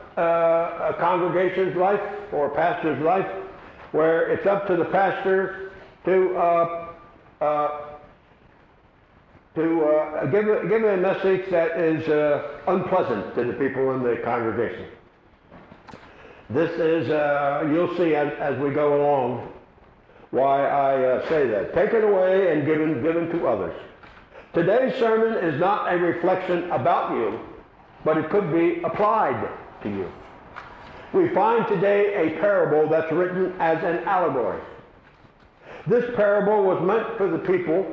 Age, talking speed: 60-79, 140 wpm